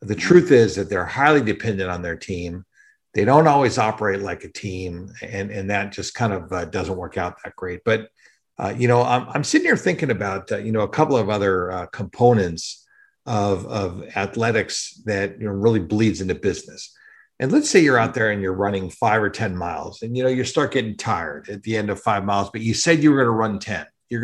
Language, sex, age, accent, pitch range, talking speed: English, male, 50-69, American, 100-135 Hz, 235 wpm